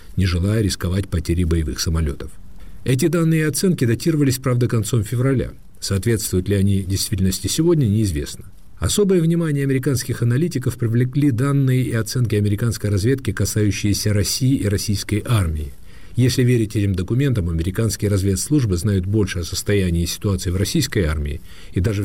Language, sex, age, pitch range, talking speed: Russian, male, 50-69, 95-120 Hz, 140 wpm